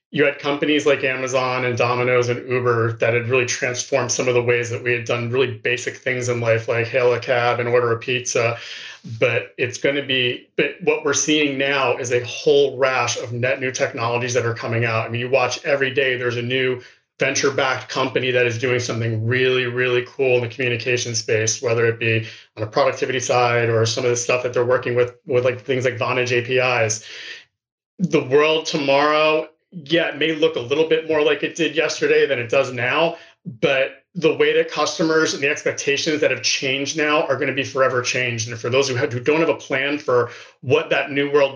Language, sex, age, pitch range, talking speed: English, male, 30-49, 120-140 Hz, 215 wpm